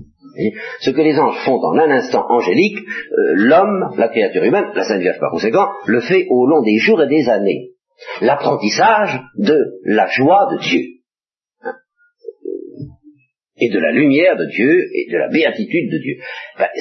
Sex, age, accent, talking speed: male, 50-69, French, 170 wpm